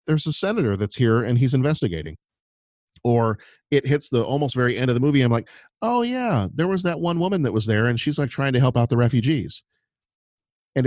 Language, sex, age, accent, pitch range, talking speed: English, male, 40-59, American, 110-145 Hz, 220 wpm